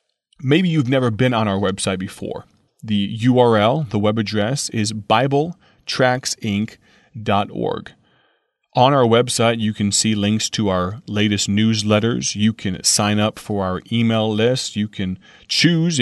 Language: English